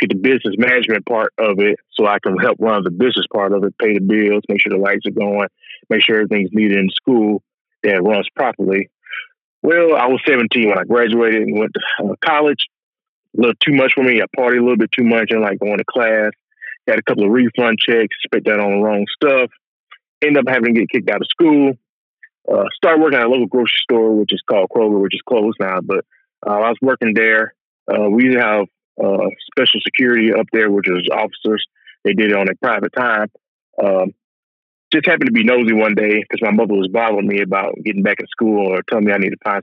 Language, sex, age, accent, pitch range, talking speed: English, male, 30-49, American, 100-125 Hz, 230 wpm